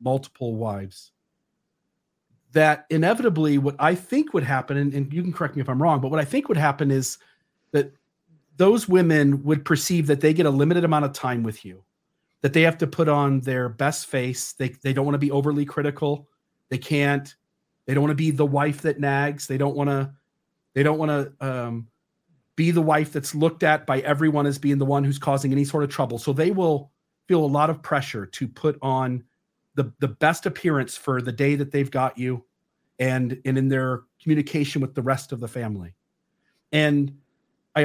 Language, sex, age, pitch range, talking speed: English, male, 40-59, 135-165 Hz, 205 wpm